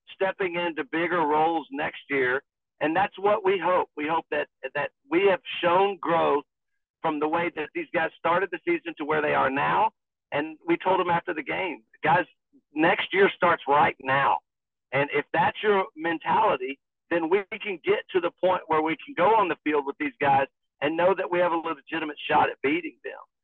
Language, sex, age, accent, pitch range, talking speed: English, male, 50-69, American, 155-185 Hz, 200 wpm